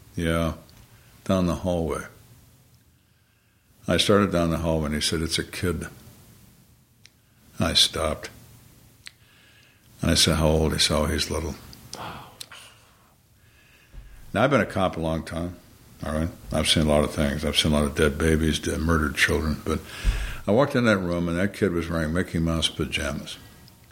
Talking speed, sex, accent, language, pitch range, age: 170 wpm, male, American, English, 80-115 Hz, 60-79